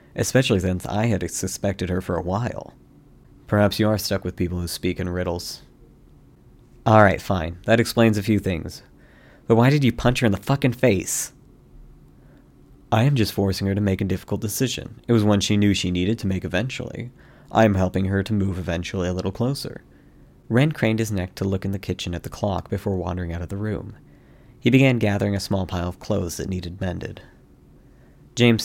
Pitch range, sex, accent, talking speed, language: 90-110 Hz, male, American, 205 wpm, English